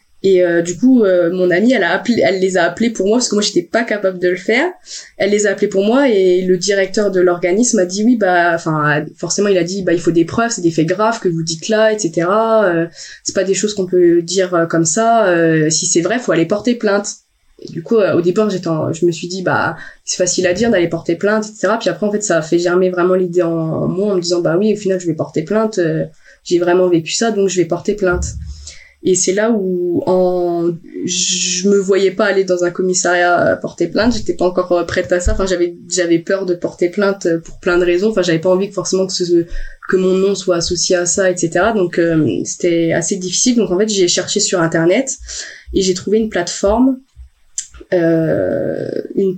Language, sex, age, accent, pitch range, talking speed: French, female, 20-39, French, 175-205 Hz, 245 wpm